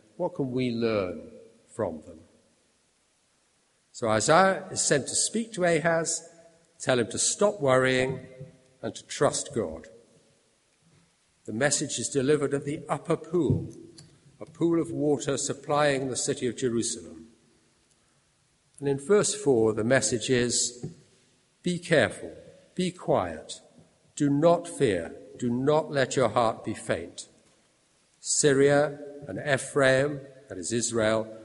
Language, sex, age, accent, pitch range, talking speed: English, male, 50-69, British, 115-155 Hz, 130 wpm